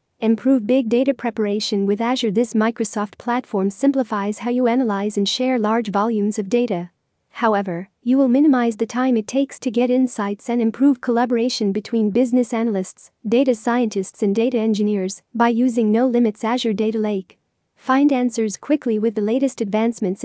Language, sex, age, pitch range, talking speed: English, female, 40-59, 215-255 Hz, 160 wpm